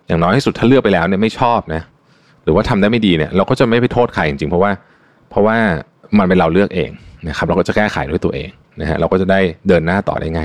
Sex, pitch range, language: male, 80-105 Hz, Thai